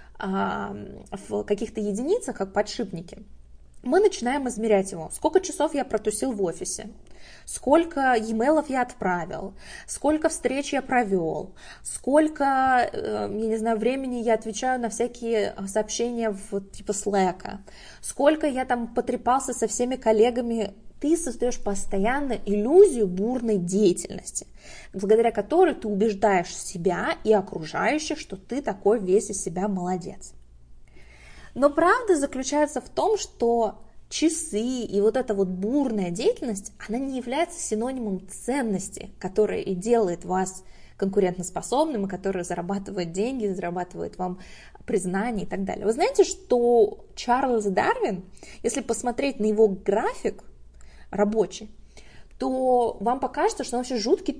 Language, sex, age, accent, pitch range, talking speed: Russian, female, 20-39, native, 195-260 Hz, 125 wpm